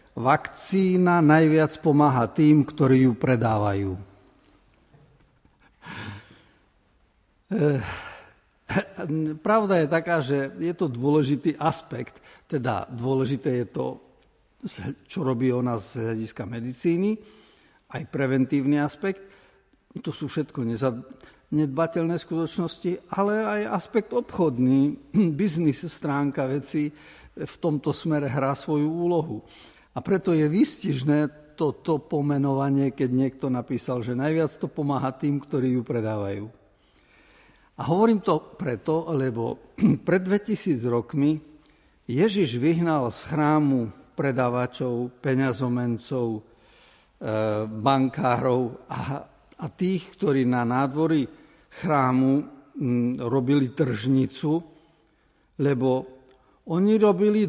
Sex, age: male, 50-69